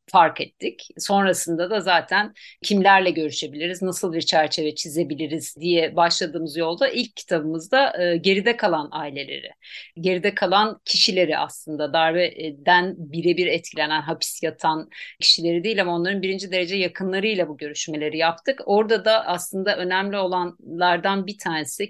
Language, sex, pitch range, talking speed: Turkish, female, 160-200 Hz, 125 wpm